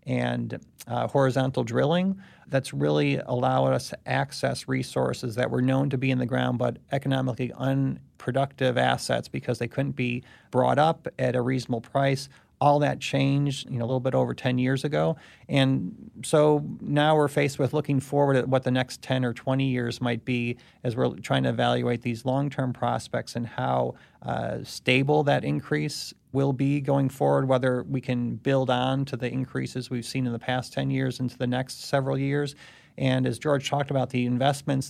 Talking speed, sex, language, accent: 180 wpm, male, English, American